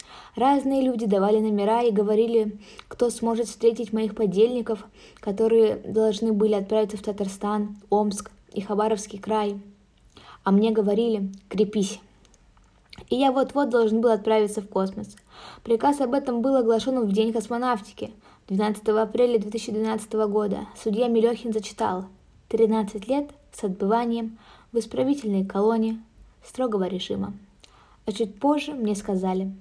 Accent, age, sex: native, 20-39, female